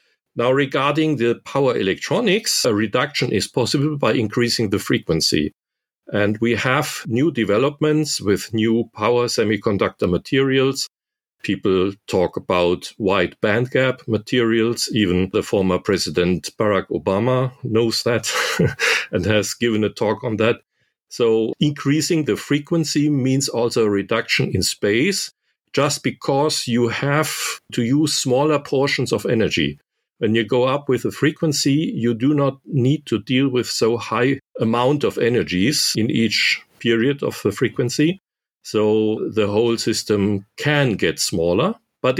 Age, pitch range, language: 50-69, 115-145 Hz, English